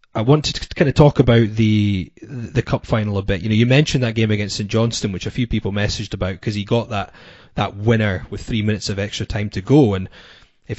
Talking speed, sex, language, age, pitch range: 245 wpm, male, English, 20-39, 105-135 Hz